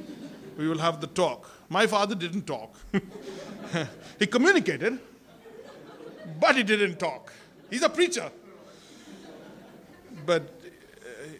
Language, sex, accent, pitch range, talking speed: English, male, Indian, 180-235 Hz, 100 wpm